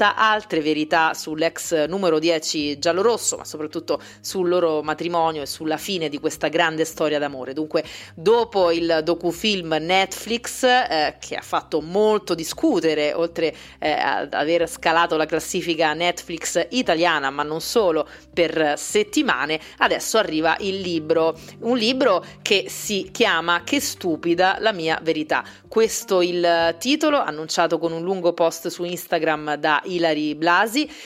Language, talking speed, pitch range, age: Italian, 140 wpm, 160-190 Hz, 30-49